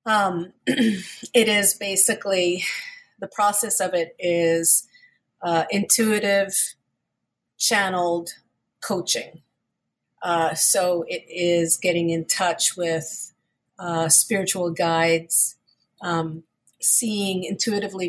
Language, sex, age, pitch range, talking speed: English, female, 40-59, 165-195 Hz, 90 wpm